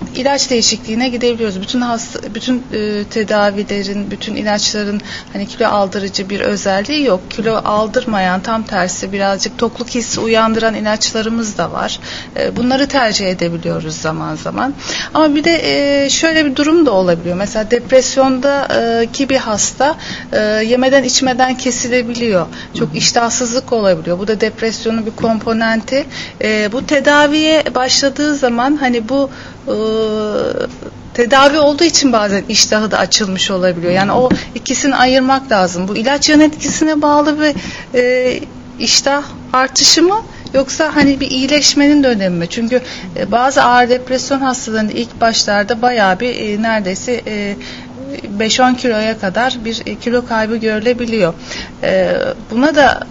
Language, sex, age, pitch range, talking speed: Turkish, female, 40-59, 215-270 Hz, 135 wpm